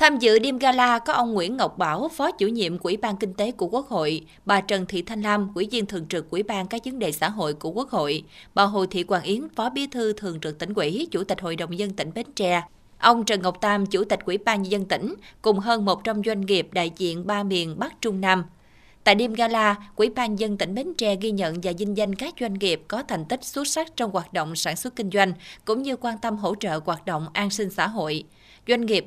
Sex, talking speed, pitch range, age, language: female, 250 wpm, 185-230 Hz, 20-39, Vietnamese